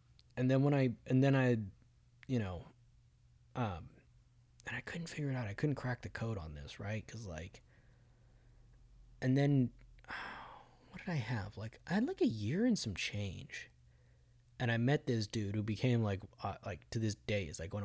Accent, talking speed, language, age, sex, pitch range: American, 195 wpm, English, 20-39, male, 105-125 Hz